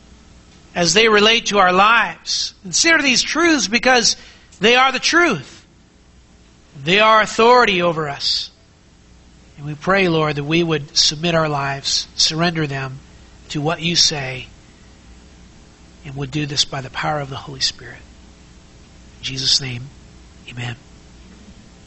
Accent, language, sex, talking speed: American, English, male, 140 wpm